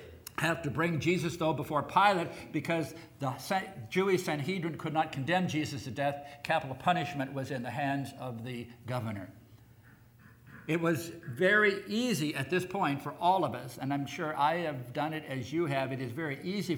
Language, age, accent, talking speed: English, 60-79, American, 180 wpm